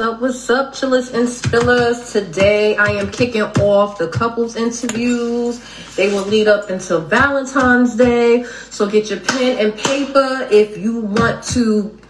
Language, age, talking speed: English, 30-49, 155 wpm